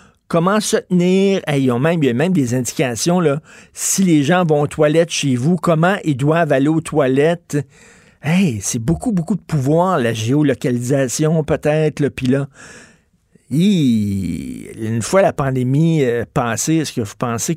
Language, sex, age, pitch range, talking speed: French, male, 50-69, 130-165 Hz, 155 wpm